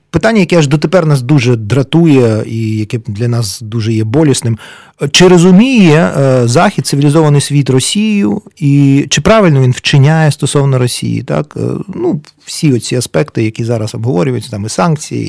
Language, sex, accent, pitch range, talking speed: Ukrainian, male, native, 125-185 Hz, 155 wpm